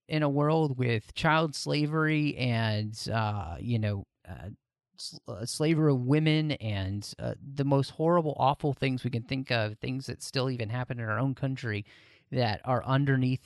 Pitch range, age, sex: 115-145 Hz, 30-49, male